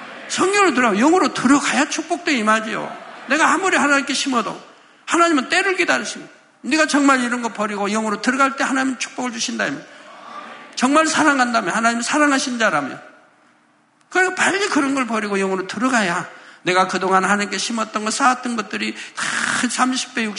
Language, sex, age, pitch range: Korean, male, 50-69, 195-275 Hz